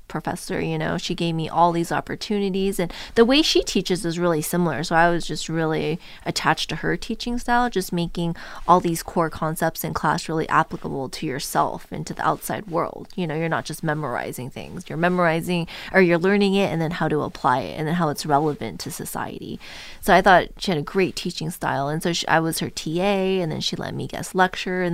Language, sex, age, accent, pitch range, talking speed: English, female, 20-39, American, 160-200 Hz, 225 wpm